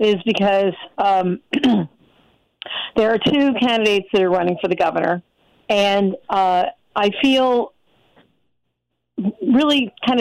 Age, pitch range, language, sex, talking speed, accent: 50-69, 180-225 Hz, English, female, 110 wpm, American